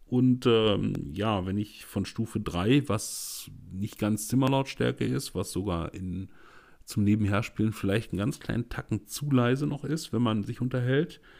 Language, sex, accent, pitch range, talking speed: German, male, German, 95-125 Hz, 160 wpm